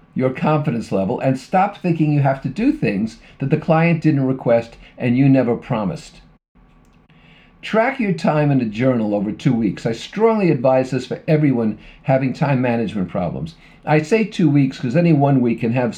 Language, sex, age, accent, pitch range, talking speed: English, male, 50-69, American, 125-165 Hz, 185 wpm